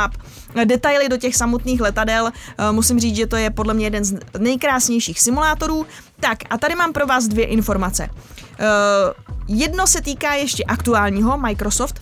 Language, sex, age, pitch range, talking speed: Czech, female, 20-39, 210-260 Hz, 150 wpm